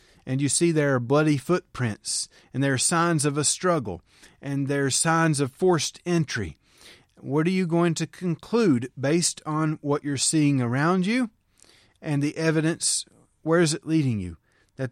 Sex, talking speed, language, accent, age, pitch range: male, 175 wpm, English, American, 30-49, 135-165 Hz